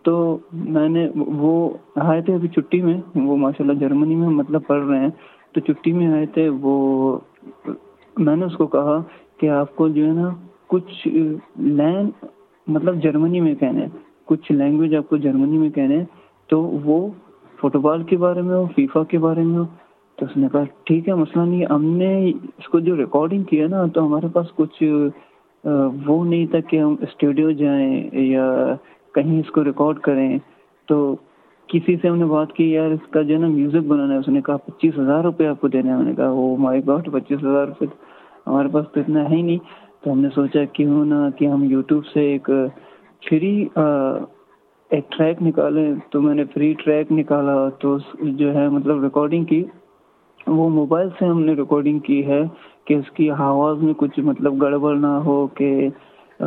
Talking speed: 130 wpm